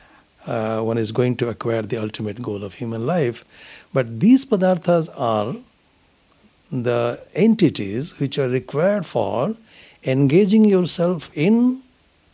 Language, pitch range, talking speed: English, 120-195 Hz, 120 wpm